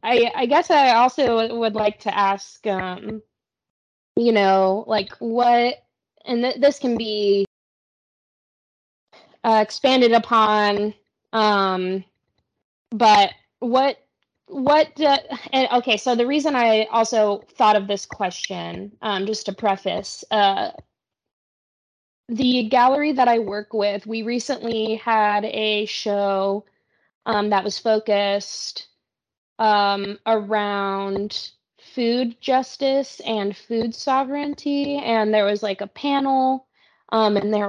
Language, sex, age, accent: English, female, 20-39, American